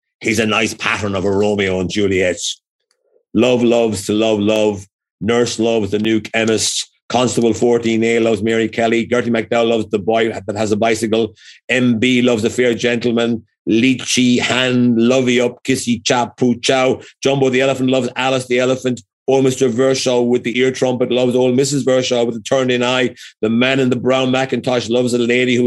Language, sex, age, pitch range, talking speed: English, male, 30-49, 115-130 Hz, 180 wpm